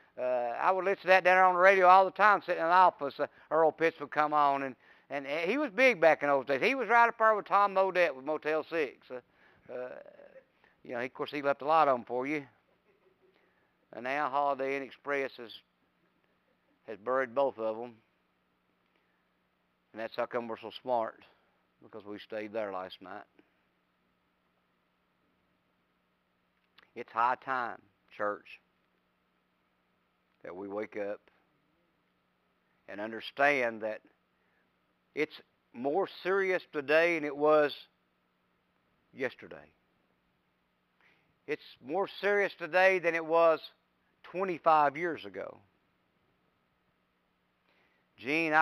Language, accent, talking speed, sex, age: English, American, 140 wpm, male, 60-79